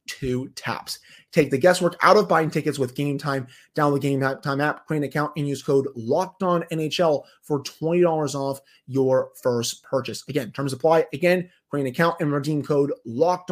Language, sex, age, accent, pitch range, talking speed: English, male, 30-49, American, 130-170 Hz, 190 wpm